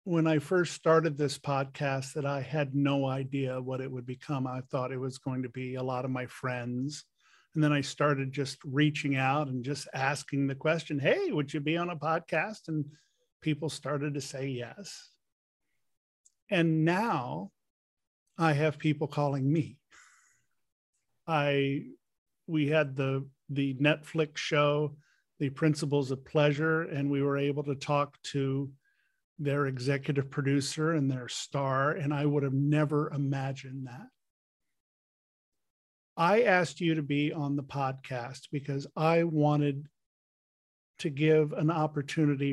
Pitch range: 135-155 Hz